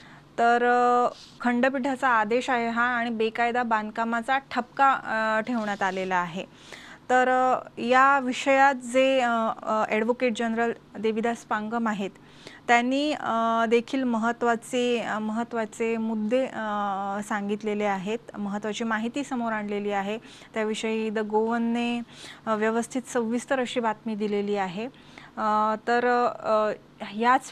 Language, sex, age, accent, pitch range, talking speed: English, female, 20-39, Indian, 215-245 Hz, 85 wpm